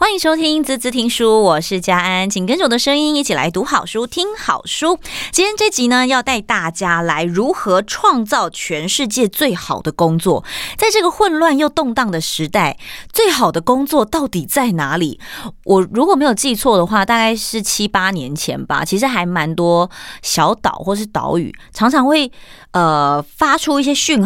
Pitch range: 170-255 Hz